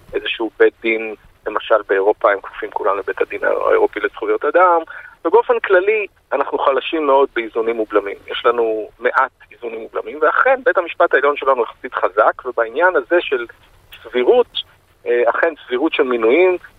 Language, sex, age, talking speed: Hebrew, male, 40-59, 145 wpm